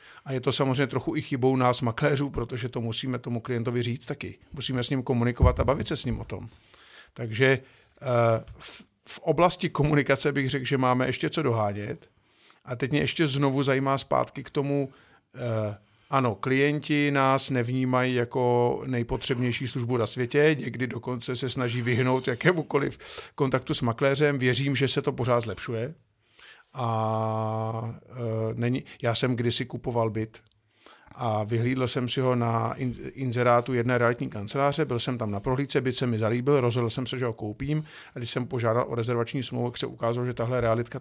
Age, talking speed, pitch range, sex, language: 50-69, 170 wpm, 115-135 Hz, male, Czech